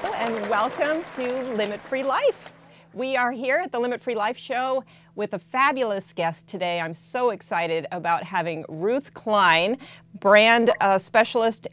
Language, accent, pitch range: English, American, 175-235 Hz